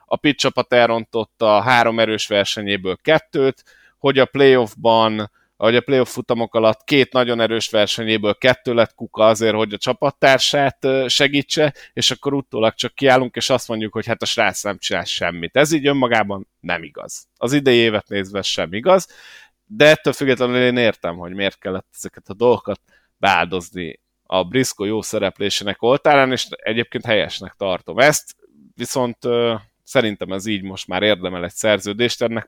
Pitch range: 105-130 Hz